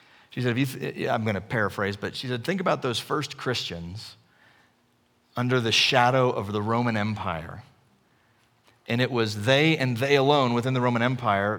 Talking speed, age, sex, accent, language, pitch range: 180 wpm, 40-59, male, American, English, 120-160 Hz